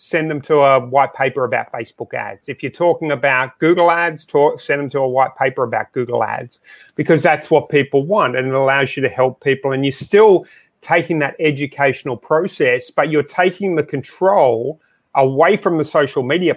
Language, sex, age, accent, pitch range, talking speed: English, male, 30-49, Australian, 140-180 Hz, 195 wpm